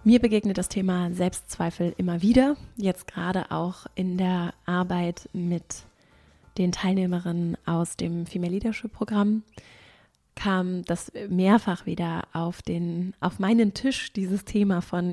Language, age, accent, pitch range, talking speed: German, 20-39, German, 175-200 Hz, 130 wpm